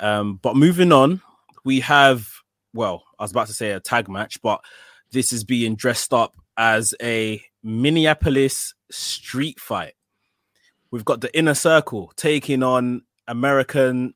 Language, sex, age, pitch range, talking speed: English, male, 20-39, 105-140 Hz, 145 wpm